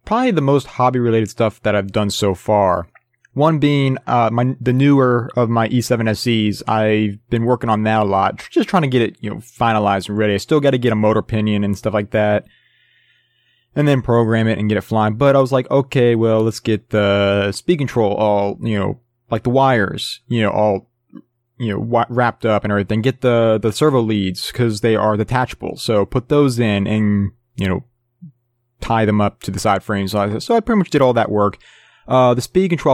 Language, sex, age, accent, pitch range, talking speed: English, male, 20-39, American, 105-125 Hz, 215 wpm